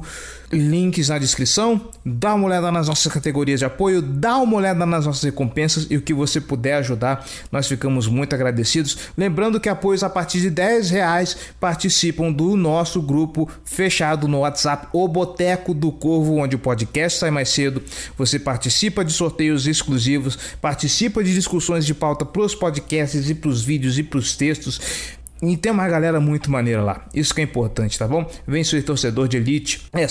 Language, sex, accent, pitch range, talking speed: Portuguese, male, Brazilian, 140-180 Hz, 185 wpm